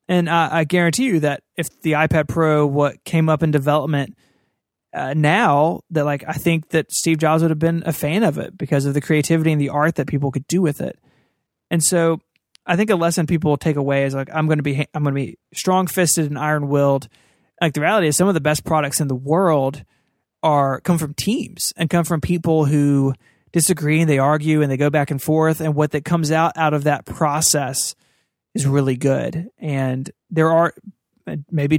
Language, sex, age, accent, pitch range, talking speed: English, male, 20-39, American, 145-165 Hz, 215 wpm